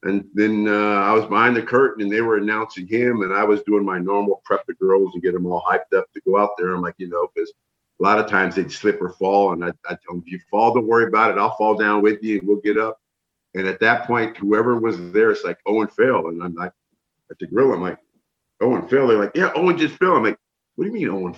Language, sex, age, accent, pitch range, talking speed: English, male, 50-69, American, 90-105 Hz, 285 wpm